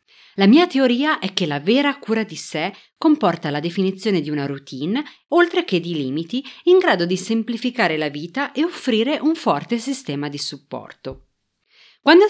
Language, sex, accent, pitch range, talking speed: Italian, female, native, 155-255 Hz, 165 wpm